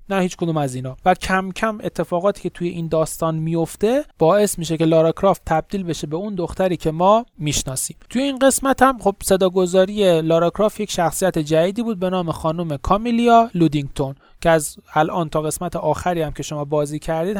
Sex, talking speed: male, 190 wpm